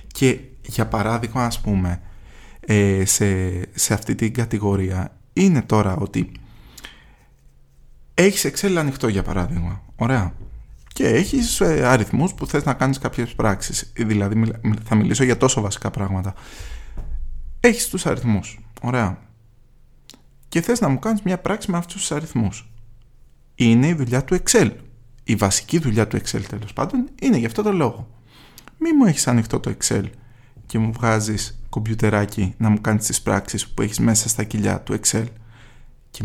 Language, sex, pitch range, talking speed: Greek, male, 105-135 Hz, 150 wpm